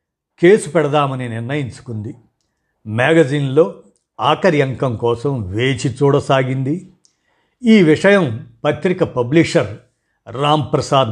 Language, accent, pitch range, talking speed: Telugu, native, 125-165 Hz, 75 wpm